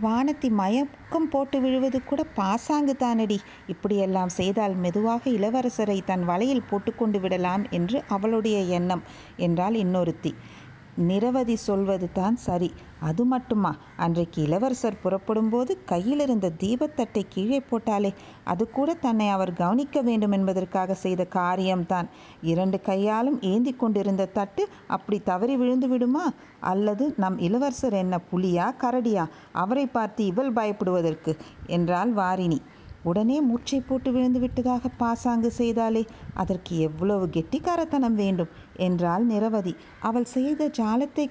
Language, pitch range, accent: Tamil, 185-245 Hz, native